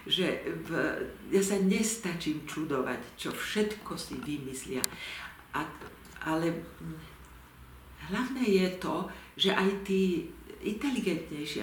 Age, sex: 60-79, female